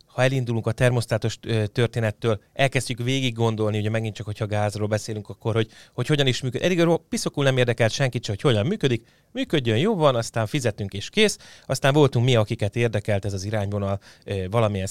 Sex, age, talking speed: male, 30-49, 175 wpm